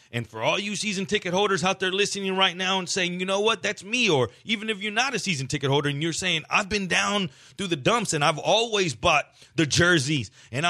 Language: English